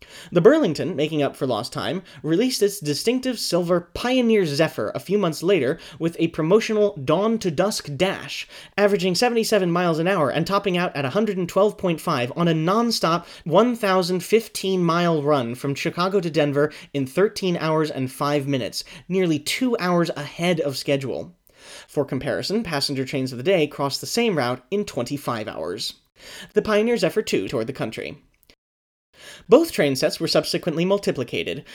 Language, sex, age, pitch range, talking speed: English, male, 30-49, 145-200 Hz, 150 wpm